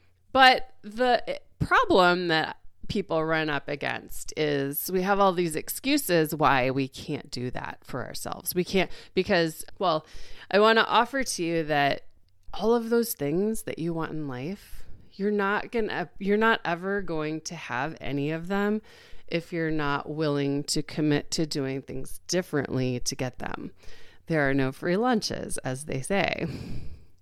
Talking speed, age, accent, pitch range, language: 165 wpm, 30-49, American, 140-180 Hz, English